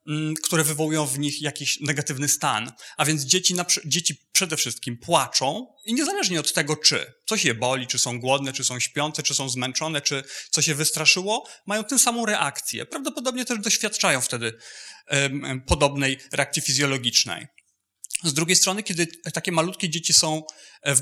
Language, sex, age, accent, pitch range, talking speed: Polish, male, 30-49, native, 140-180 Hz, 165 wpm